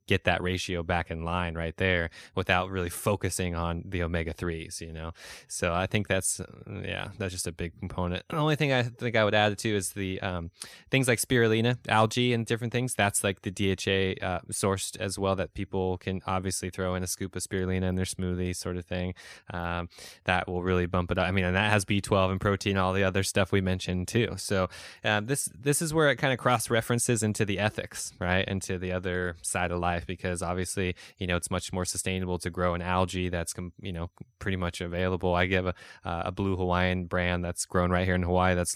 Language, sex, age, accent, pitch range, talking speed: English, male, 20-39, American, 90-100 Hz, 225 wpm